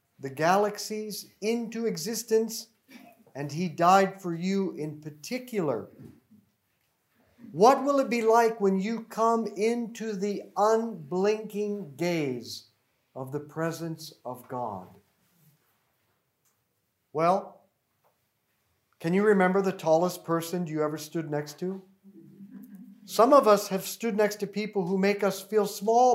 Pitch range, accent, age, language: 175-225 Hz, American, 50-69, English